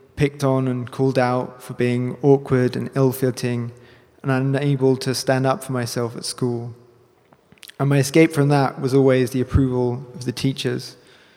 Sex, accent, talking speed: male, British, 165 wpm